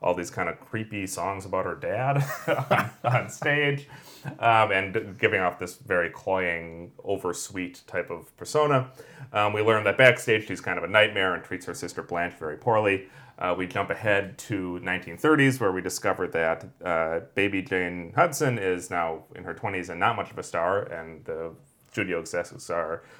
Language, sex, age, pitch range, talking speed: English, male, 30-49, 85-125 Hz, 180 wpm